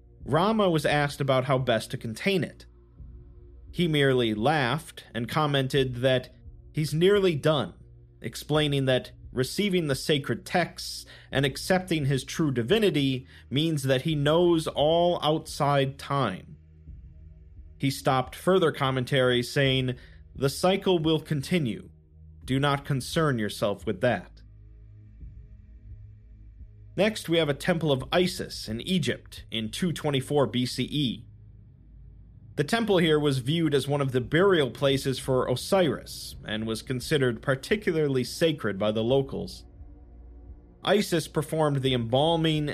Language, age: English, 40-59